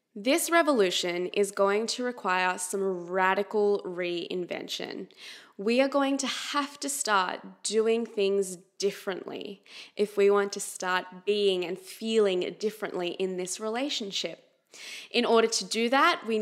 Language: English